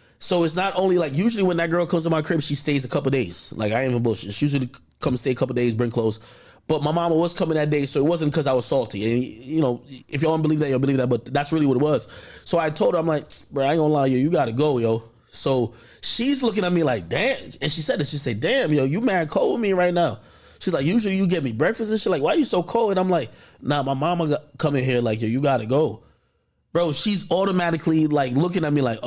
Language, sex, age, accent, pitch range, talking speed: English, male, 20-39, American, 125-165 Hz, 285 wpm